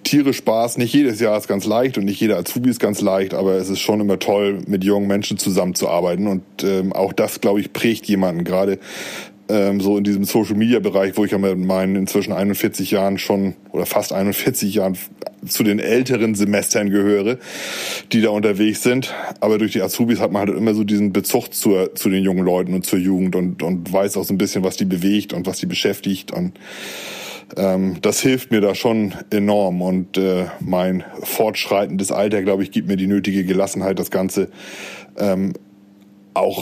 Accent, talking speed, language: German, 195 wpm, German